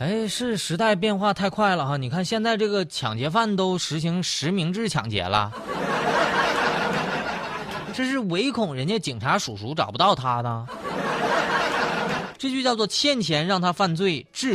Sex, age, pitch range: male, 30-49, 135-220 Hz